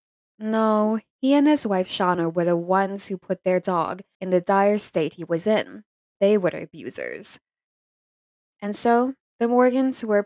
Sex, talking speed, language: female, 165 wpm, English